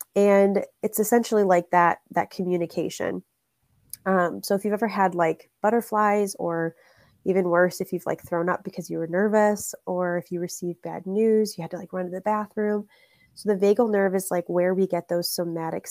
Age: 20-39